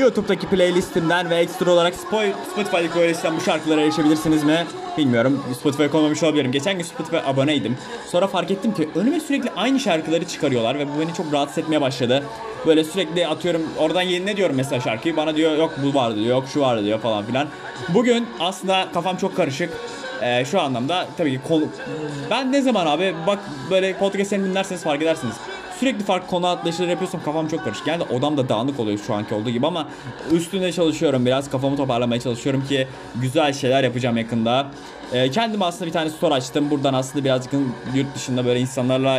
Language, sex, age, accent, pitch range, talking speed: Turkish, male, 20-39, native, 130-180 Hz, 185 wpm